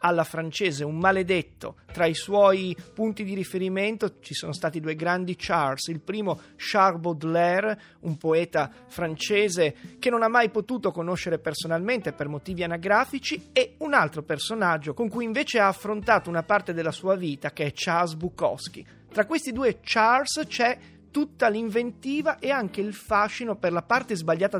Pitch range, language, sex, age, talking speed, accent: 175-235 Hz, Italian, male, 30-49, 160 wpm, native